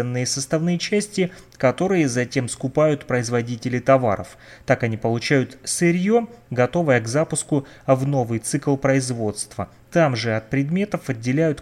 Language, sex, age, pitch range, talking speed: Russian, male, 30-49, 130-170 Hz, 120 wpm